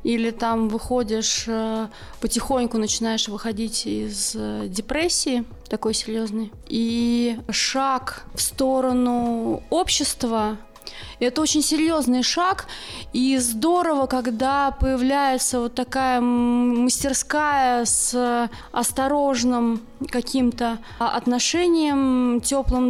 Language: Russian